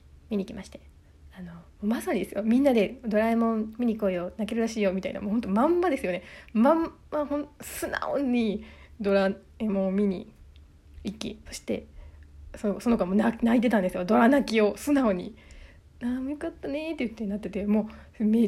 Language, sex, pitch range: Japanese, female, 190-250 Hz